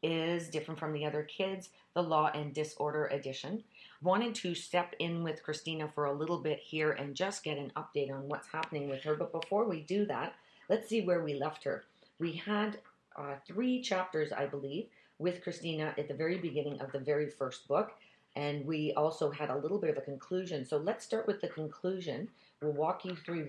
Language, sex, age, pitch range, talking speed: English, female, 40-59, 145-180 Hz, 205 wpm